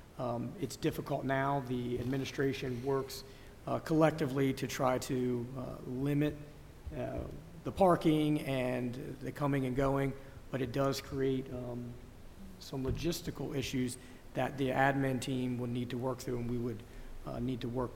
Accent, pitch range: American, 125-135 Hz